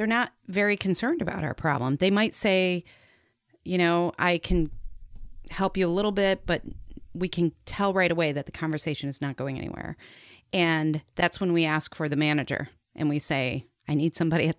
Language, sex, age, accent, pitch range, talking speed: English, female, 30-49, American, 140-175 Hz, 195 wpm